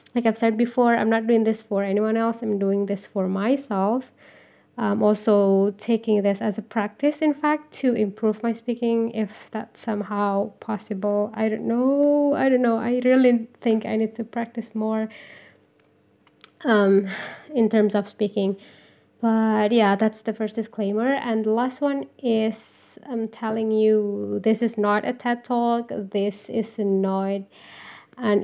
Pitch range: 205-235 Hz